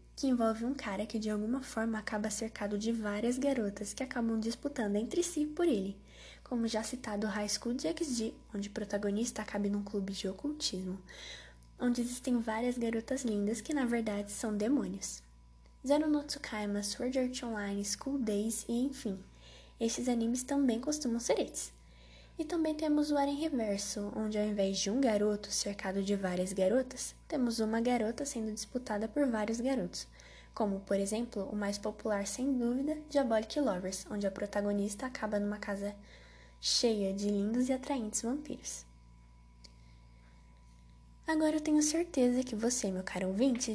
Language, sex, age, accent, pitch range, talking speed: Portuguese, female, 10-29, Brazilian, 200-260 Hz, 160 wpm